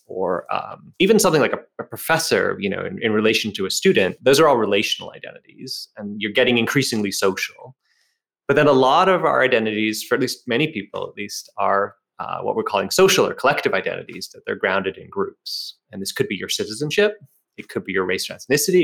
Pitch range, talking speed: 110-155 Hz, 215 wpm